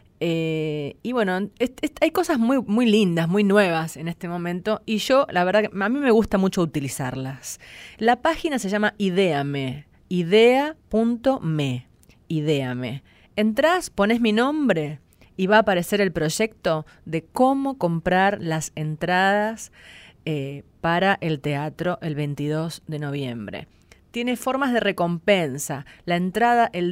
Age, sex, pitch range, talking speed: 30-49, female, 150-235 Hz, 140 wpm